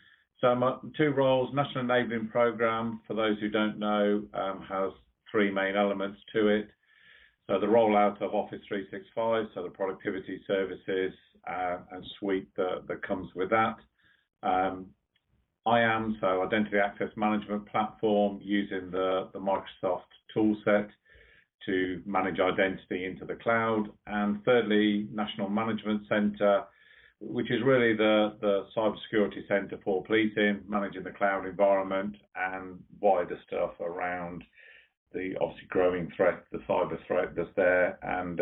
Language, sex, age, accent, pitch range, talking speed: English, male, 50-69, British, 100-110 Hz, 135 wpm